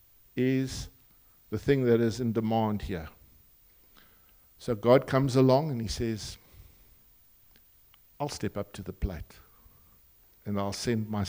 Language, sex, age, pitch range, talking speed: English, male, 60-79, 95-140 Hz, 135 wpm